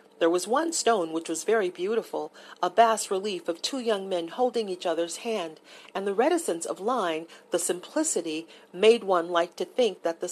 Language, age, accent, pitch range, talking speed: English, 40-59, American, 175-225 Hz, 190 wpm